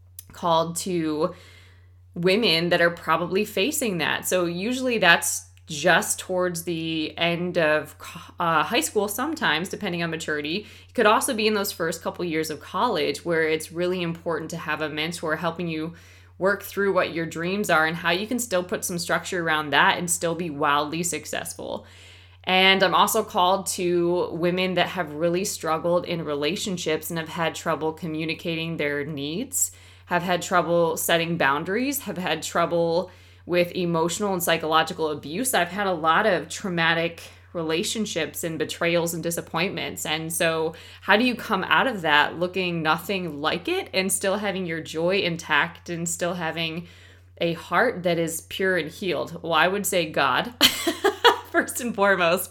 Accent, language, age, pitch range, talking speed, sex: American, English, 20-39, 160-190 Hz, 165 wpm, female